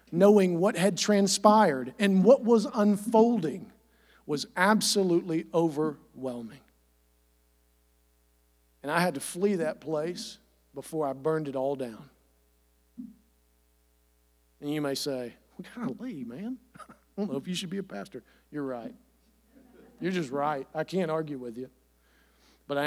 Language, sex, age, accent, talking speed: English, male, 50-69, American, 135 wpm